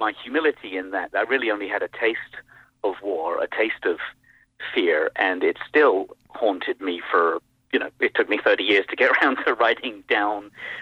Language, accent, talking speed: English, British, 195 wpm